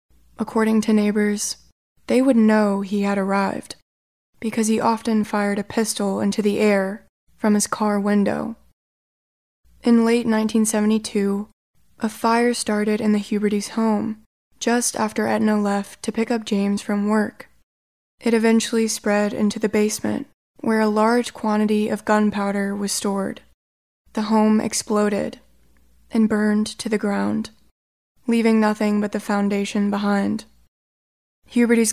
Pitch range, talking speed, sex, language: 200-220 Hz, 135 wpm, female, English